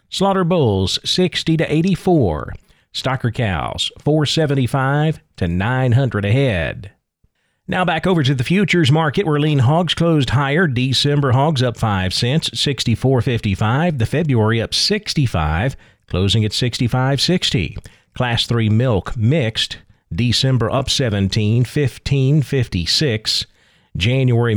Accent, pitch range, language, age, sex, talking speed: American, 110-145 Hz, English, 40-59, male, 110 wpm